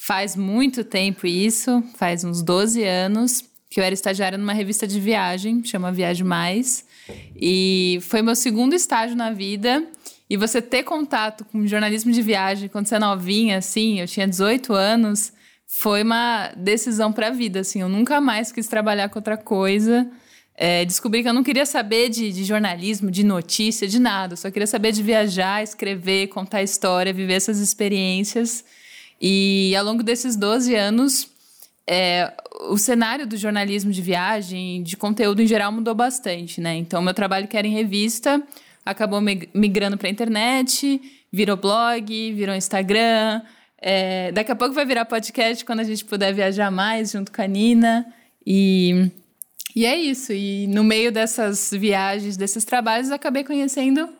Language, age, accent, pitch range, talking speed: Portuguese, 10-29, Brazilian, 195-235 Hz, 165 wpm